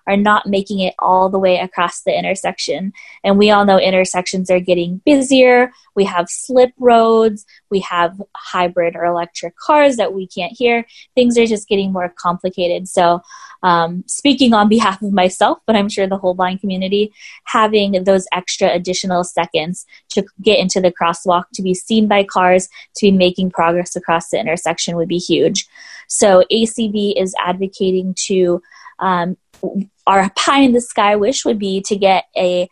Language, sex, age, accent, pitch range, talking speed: English, female, 20-39, American, 180-215 Hz, 170 wpm